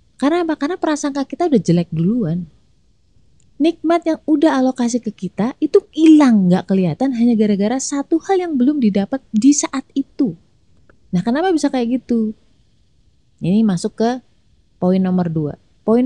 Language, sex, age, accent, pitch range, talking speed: Indonesian, female, 20-39, native, 190-265 Hz, 150 wpm